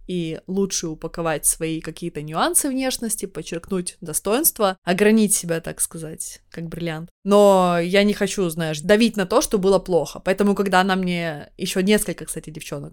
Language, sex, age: Russian, female, 20-39